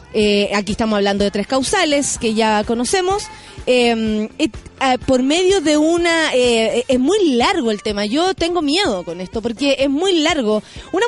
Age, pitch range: 30-49, 240-335 Hz